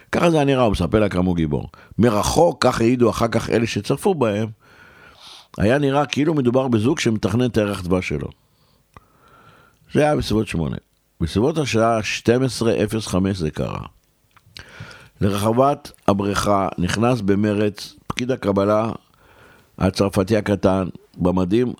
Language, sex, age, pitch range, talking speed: Hebrew, male, 60-79, 95-115 Hz, 125 wpm